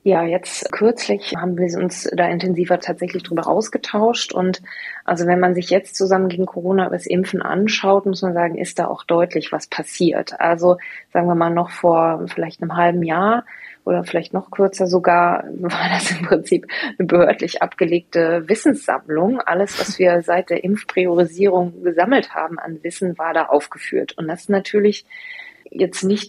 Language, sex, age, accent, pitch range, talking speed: German, female, 20-39, German, 175-205 Hz, 170 wpm